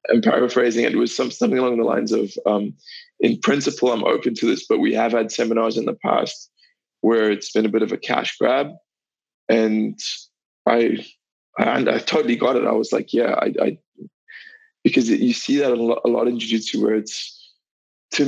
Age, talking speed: 20-39, 205 wpm